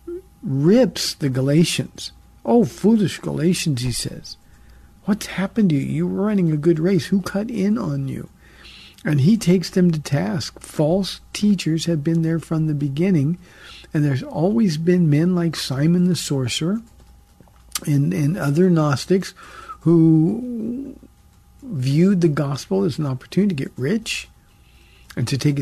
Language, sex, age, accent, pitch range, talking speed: English, male, 50-69, American, 145-185 Hz, 150 wpm